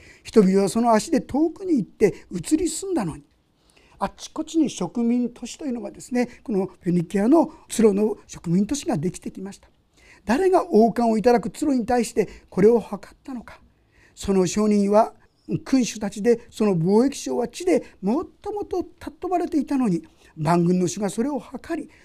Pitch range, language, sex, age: 185-285 Hz, Japanese, male, 50-69